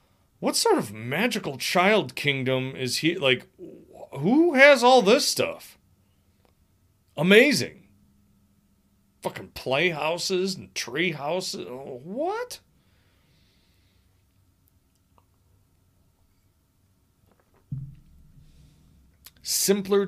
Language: English